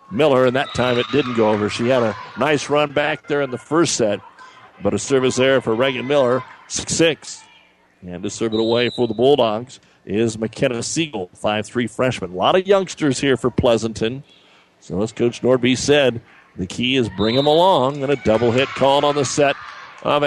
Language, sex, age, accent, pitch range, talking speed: English, male, 50-69, American, 120-150 Hz, 200 wpm